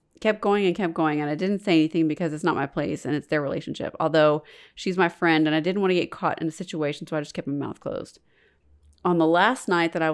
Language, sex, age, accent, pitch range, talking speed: English, female, 30-49, American, 155-185 Hz, 270 wpm